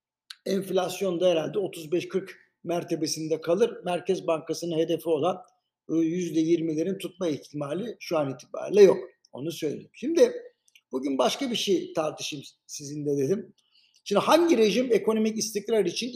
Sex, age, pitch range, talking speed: male, 60-79, 170-215 Hz, 125 wpm